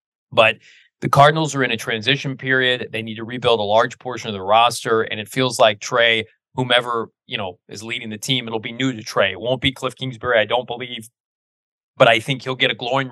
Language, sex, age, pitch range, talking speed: English, male, 20-39, 110-130 Hz, 230 wpm